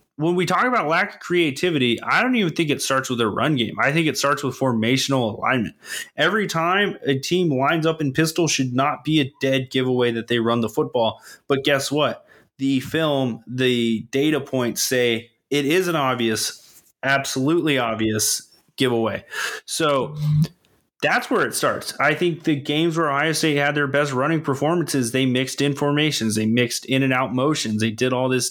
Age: 20-39